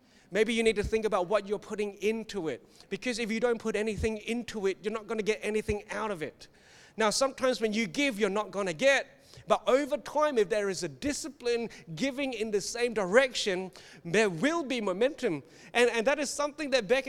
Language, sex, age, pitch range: English, male, 30-49, 205-265 Hz